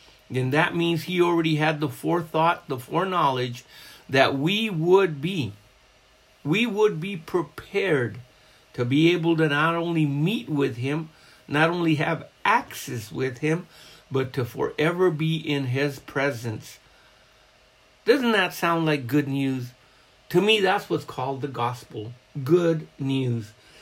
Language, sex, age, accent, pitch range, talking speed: English, male, 60-79, American, 125-165 Hz, 140 wpm